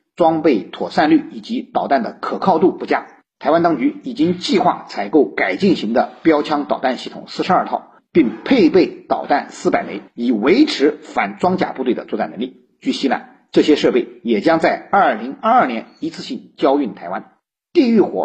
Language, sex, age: Chinese, male, 50-69